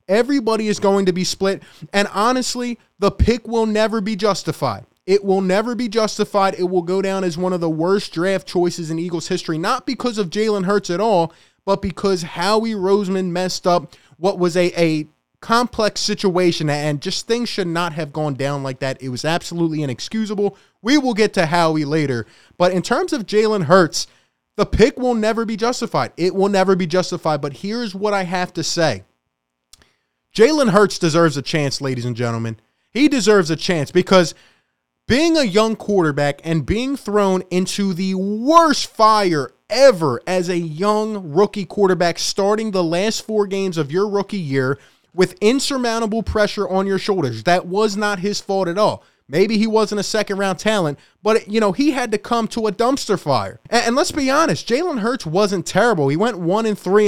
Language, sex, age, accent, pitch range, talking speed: English, male, 20-39, American, 170-215 Hz, 185 wpm